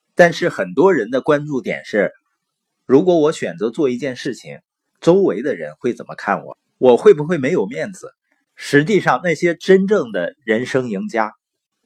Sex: male